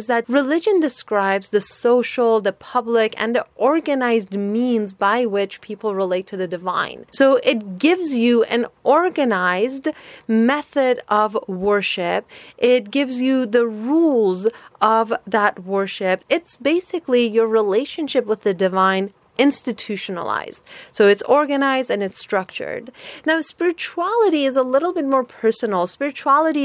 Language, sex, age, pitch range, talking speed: English, female, 30-49, 200-255 Hz, 130 wpm